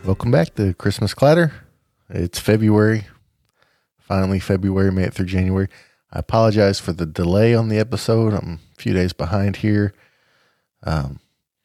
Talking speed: 140 wpm